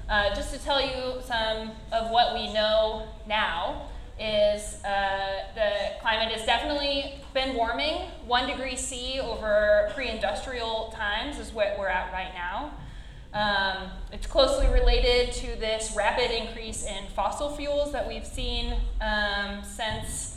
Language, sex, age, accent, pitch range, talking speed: English, female, 20-39, American, 210-260 Hz, 140 wpm